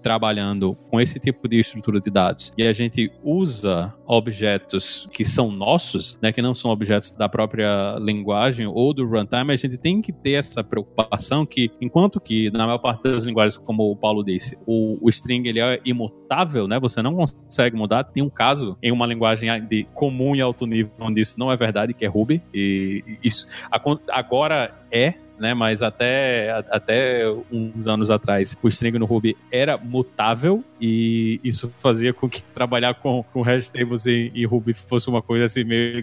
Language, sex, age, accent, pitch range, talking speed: Portuguese, male, 20-39, Brazilian, 110-125 Hz, 185 wpm